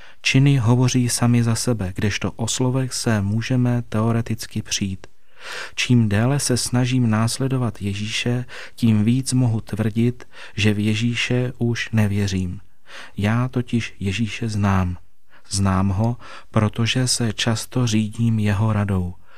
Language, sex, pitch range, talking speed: Czech, male, 105-120 Hz, 120 wpm